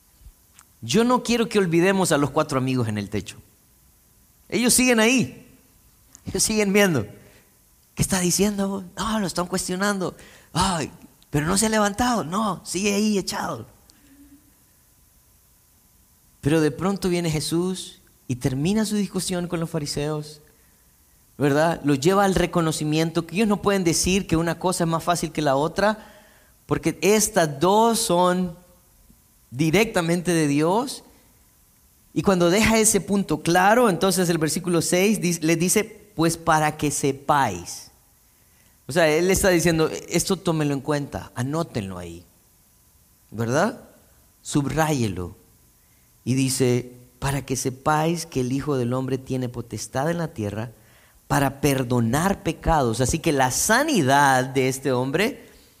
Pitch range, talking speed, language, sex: 130-190 Hz, 140 wpm, Spanish, male